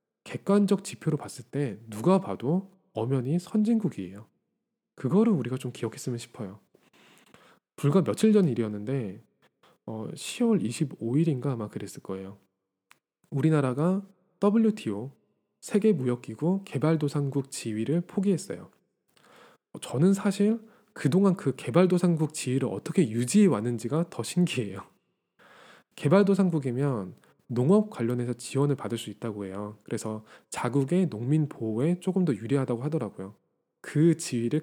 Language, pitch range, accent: Korean, 120-185 Hz, native